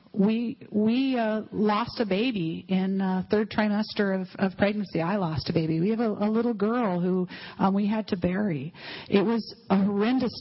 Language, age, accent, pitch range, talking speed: English, 50-69, American, 180-230 Hz, 195 wpm